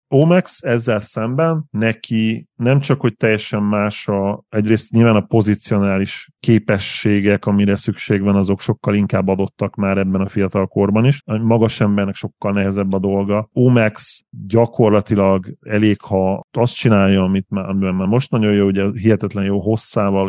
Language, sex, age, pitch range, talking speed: Hungarian, male, 30-49, 100-115 Hz, 150 wpm